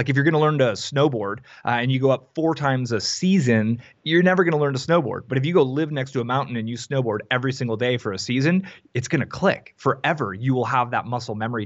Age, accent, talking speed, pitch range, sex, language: 30-49, American, 275 wpm, 115-140 Hz, male, English